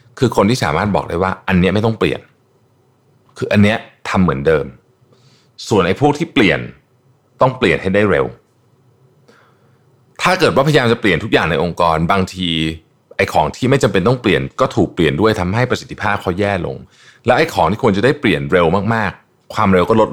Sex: male